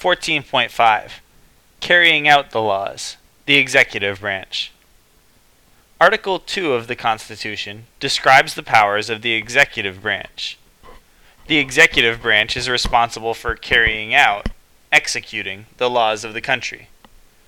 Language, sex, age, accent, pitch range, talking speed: English, male, 20-39, American, 110-145 Hz, 120 wpm